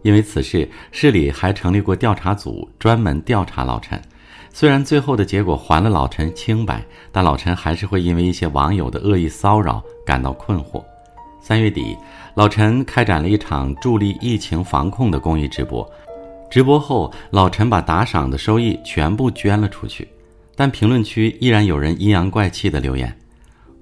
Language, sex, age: Chinese, male, 50-69